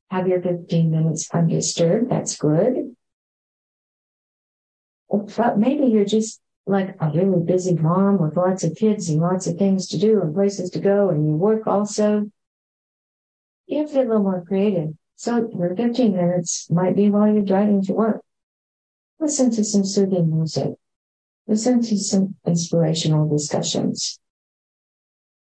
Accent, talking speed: American, 150 wpm